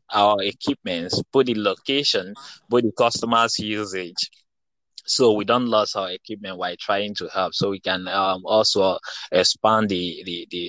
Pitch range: 100-130 Hz